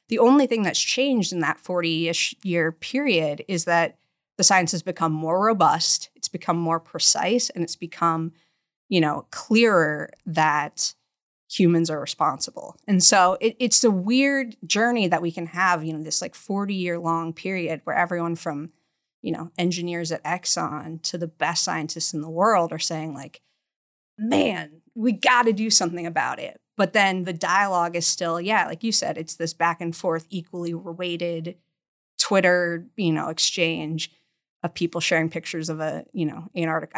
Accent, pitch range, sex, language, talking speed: American, 165-195 Hz, female, English, 170 wpm